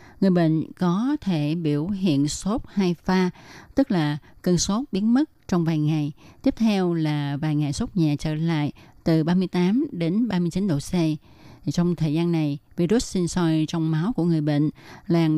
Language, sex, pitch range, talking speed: Vietnamese, female, 155-190 Hz, 180 wpm